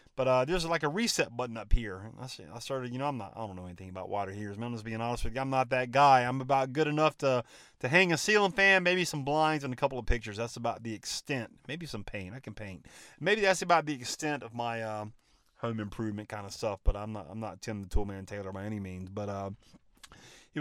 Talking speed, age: 260 wpm, 30-49